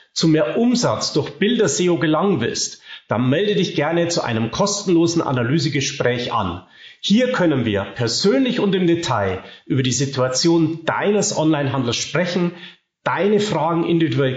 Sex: male